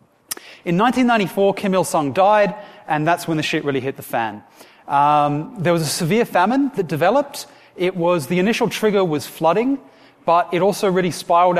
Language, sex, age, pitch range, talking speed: English, male, 30-49, 155-205 Hz, 175 wpm